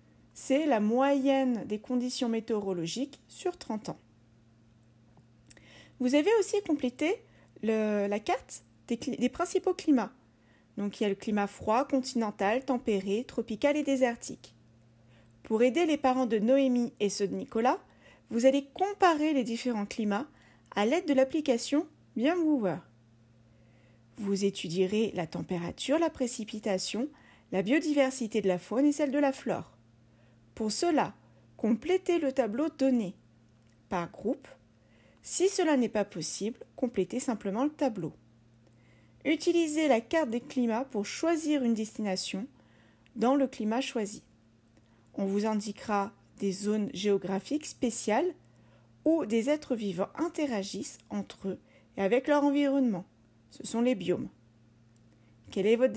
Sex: female